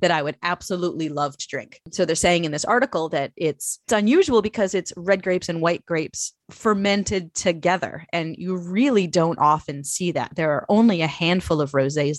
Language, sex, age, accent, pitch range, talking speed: English, female, 30-49, American, 155-195 Hz, 195 wpm